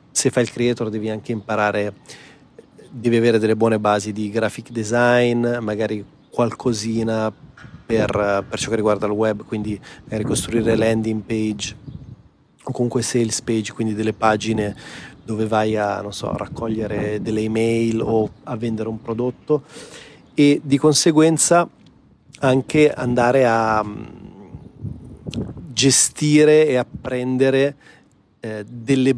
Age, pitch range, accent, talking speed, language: 30-49, 110-125 Hz, native, 120 wpm, Italian